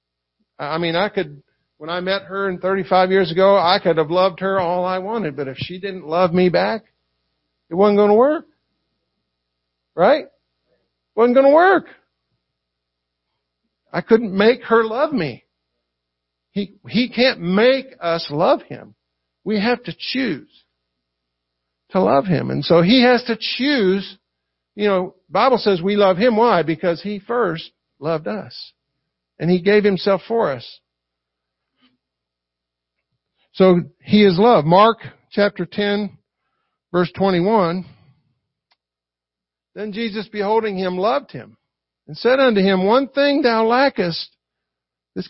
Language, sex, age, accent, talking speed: English, male, 50-69, American, 140 wpm